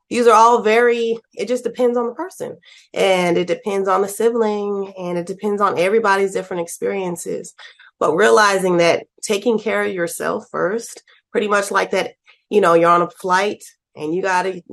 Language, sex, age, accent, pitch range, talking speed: English, female, 30-49, American, 170-215 Hz, 185 wpm